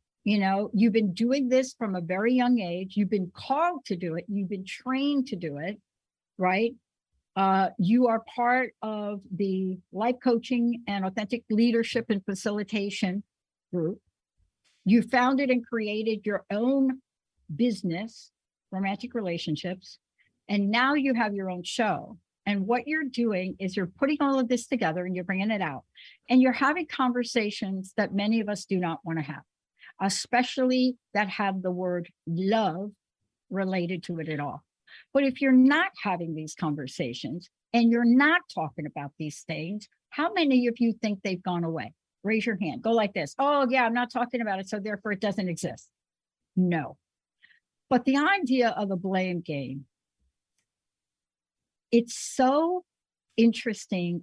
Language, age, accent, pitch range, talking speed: English, 60-79, American, 180-245 Hz, 160 wpm